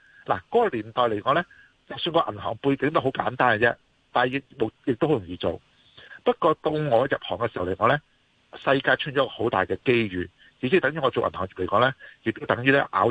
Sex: male